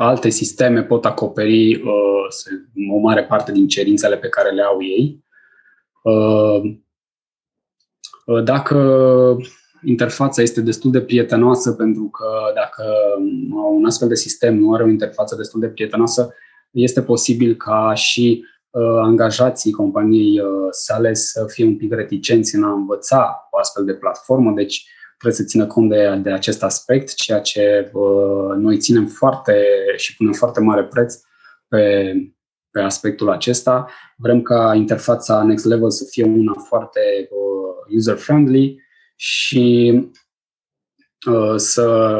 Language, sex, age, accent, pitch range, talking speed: Romanian, male, 20-39, native, 105-125 Hz, 130 wpm